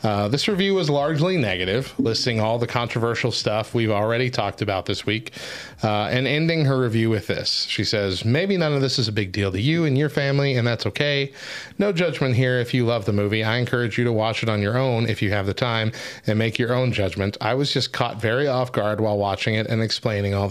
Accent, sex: American, male